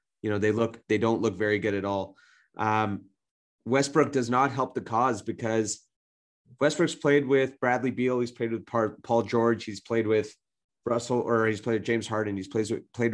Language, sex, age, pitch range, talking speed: English, male, 30-49, 110-130 Hz, 190 wpm